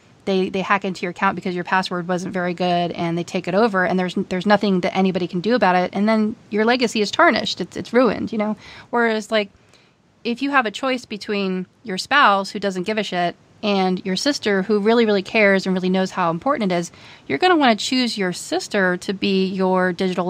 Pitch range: 185-225 Hz